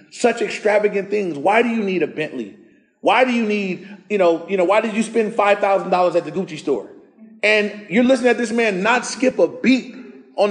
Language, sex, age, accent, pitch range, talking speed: English, male, 30-49, American, 155-205 Hz, 225 wpm